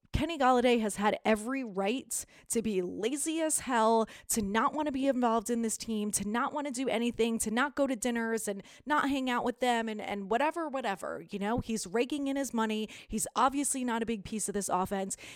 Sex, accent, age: female, American, 30-49